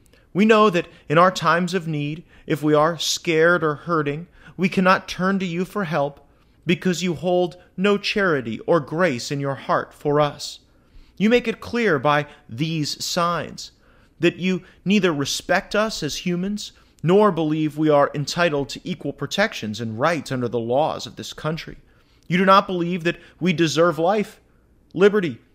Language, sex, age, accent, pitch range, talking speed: English, male, 30-49, American, 130-180 Hz, 170 wpm